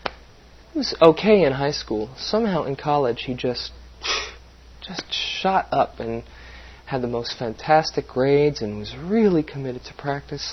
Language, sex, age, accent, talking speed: English, male, 30-49, American, 140 wpm